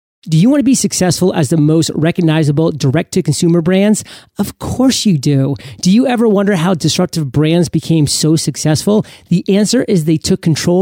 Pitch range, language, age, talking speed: 155-190 Hz, English, 30-49, 175 wpm